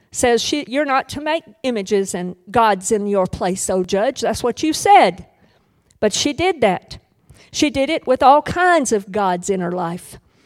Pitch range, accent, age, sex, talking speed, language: 215-310 Hz, American, 50-69, female, 190 wpm, English